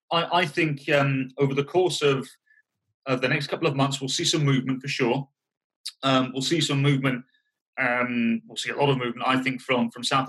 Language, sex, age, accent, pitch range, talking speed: English, male, 30-49, British, 125-145 Hz, 215 wpm